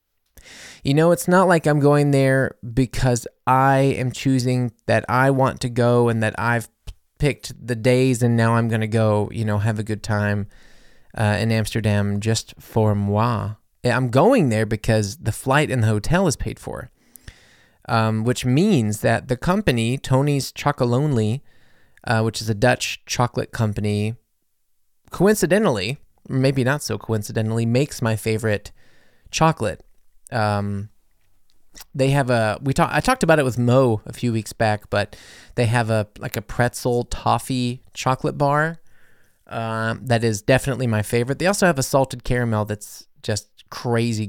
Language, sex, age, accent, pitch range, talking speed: English, male, 20-39, American, 110-135 Hz, 160 wpm